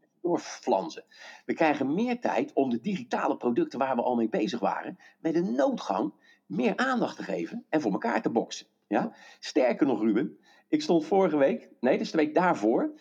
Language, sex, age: Dutch, male, 50-69